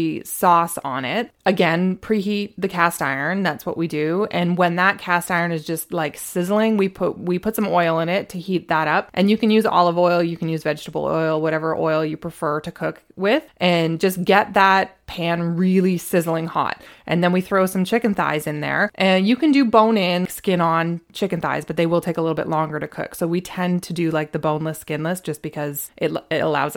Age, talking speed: 20-39, 230 wpm